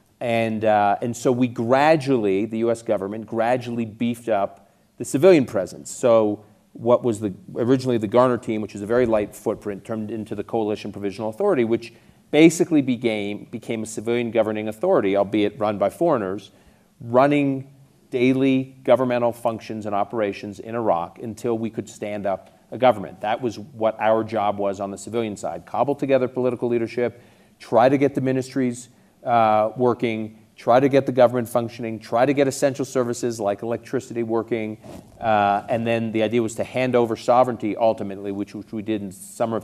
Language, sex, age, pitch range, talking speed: English, male, 40-59, 105-120 Hz, 175 wpm